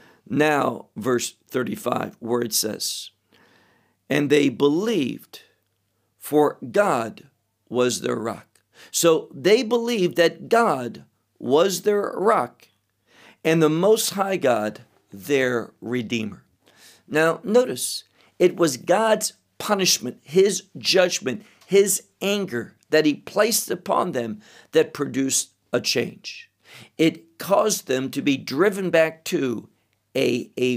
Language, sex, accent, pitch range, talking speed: English, male, American, 125-180 Hz, 115 wpm